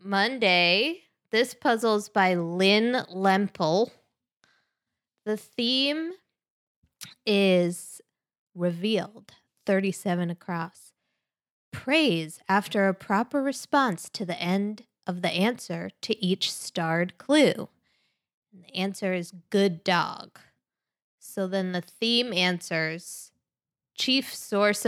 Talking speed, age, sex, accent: 95 wpm, 20-39, female, American